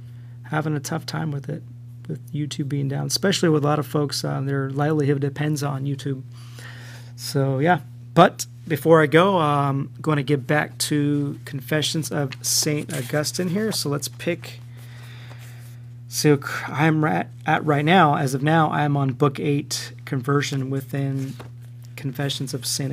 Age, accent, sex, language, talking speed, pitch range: 30-49, American, male, English, 155 wpm, 120-150 Hz